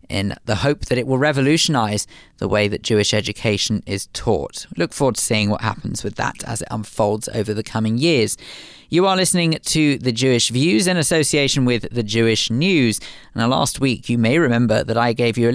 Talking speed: 205 wpm